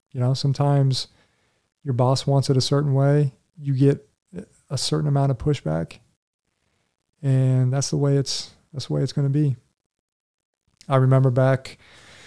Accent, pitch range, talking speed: American, 125-140 Hz, 155 wpm